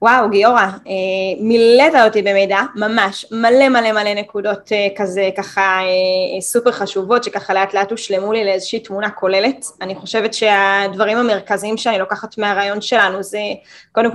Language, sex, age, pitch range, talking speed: English, female, 10-29, 200-230 Hz, 140 wpm